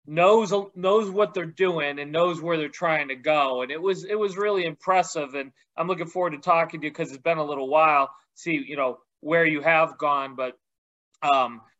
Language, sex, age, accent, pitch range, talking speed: English, male, 30-49, American, 140-165 Hz, 215 wpm